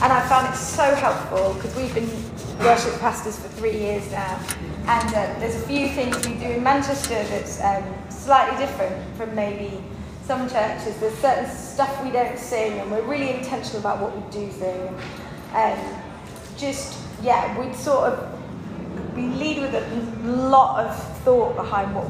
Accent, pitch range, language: British, 205-260 Hz, English